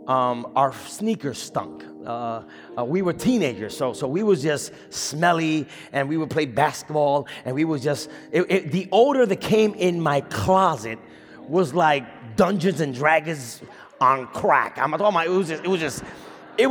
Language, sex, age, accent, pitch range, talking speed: English, male, 30-49, American, 160-230 Hz, 180 wpm